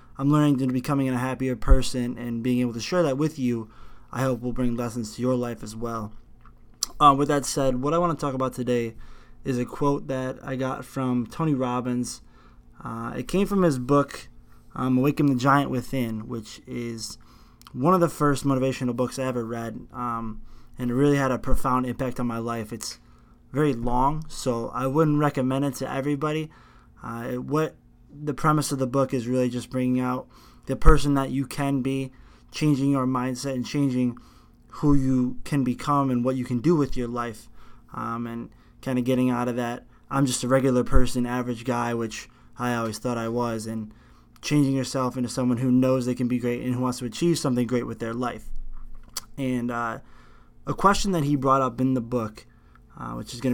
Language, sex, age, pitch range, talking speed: English, male, 20-39, 120-135 Hz, 205 wpm